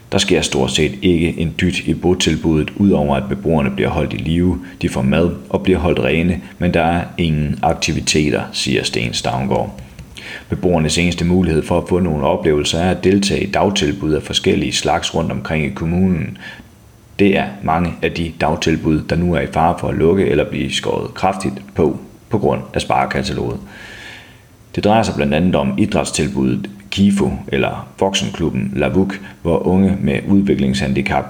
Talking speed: 170 wpm